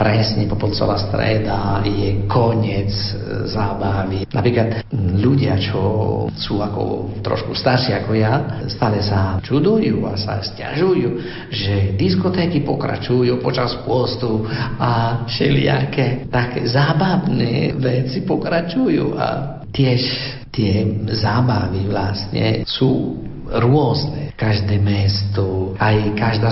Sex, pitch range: male, 100-125 Hz